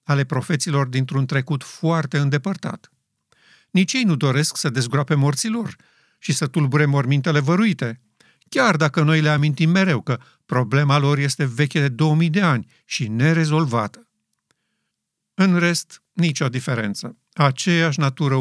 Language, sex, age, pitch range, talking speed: Romanian, male, 50-69, 135-165 Hz, 135 wpm